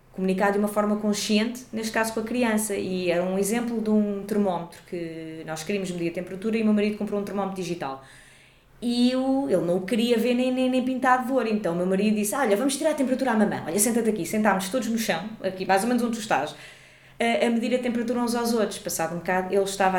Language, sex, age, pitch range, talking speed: Portuguese, female, 20-39, 175-225 Hz, 245 wpm